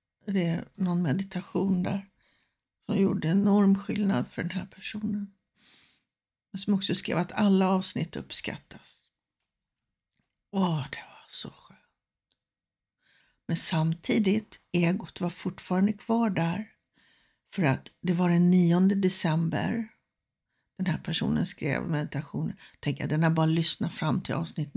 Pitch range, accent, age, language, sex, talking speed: 160-200 Hz, native, 60-79, Swedish, female, 130 wpm